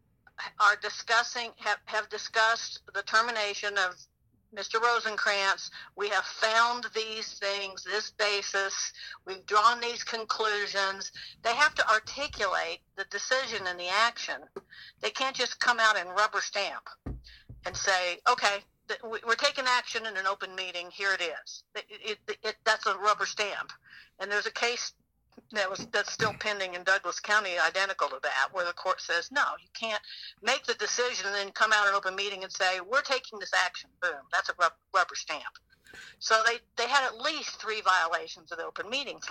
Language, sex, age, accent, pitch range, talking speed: English, female, 60-79, American, 195-235 Hz, 170 wpm